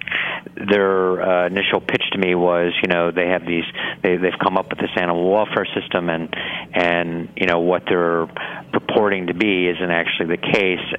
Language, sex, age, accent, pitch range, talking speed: English, male, 50-69, American, 85-105 Hz, 195 wpm